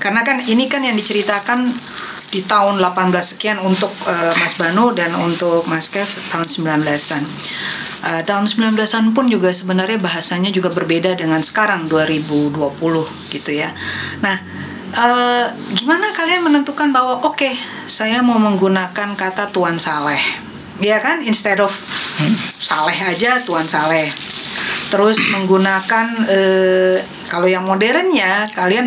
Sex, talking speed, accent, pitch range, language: female, 130 wpm, native, 175-215 Hz, Indonesian